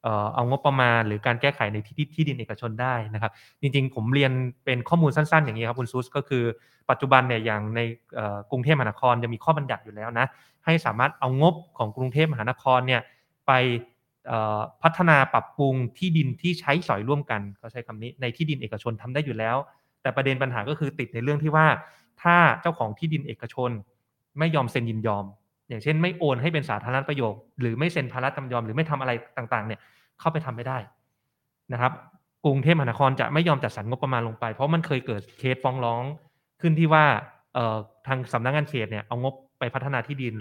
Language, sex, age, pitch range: Thai, male, 20-39, 115-145 Hz